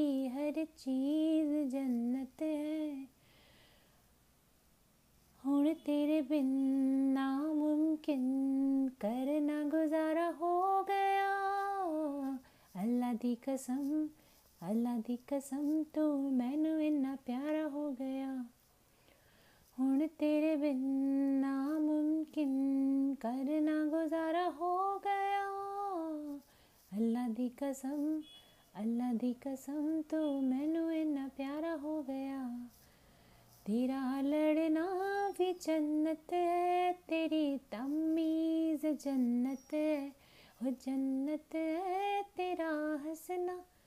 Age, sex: 30-49, female